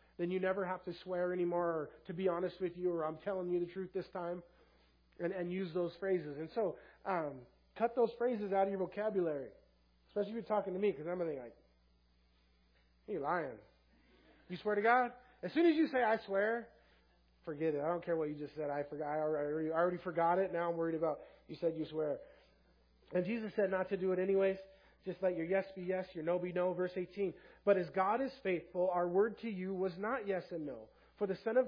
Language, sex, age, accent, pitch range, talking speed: English, male, 30-49, American, 165-200 Hz, 240 wpm